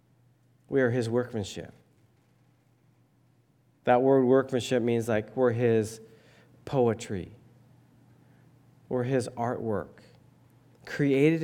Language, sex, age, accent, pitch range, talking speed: English, male, 40-59, American, 115-135 Hz, 85 wpm